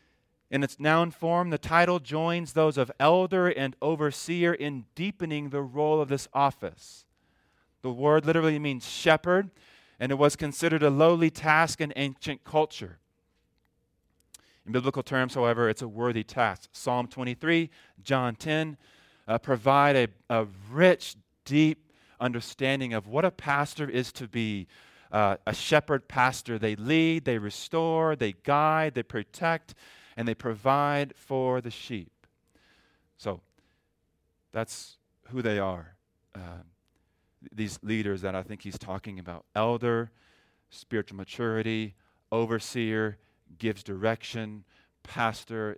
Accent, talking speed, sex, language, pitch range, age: American, 130 wpm, male, English, 105-145 Hz, 40-59